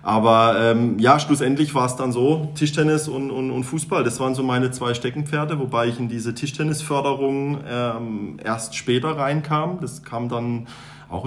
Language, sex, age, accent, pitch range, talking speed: German, male, 30-49, German, 110-130 Hz, 170 wpm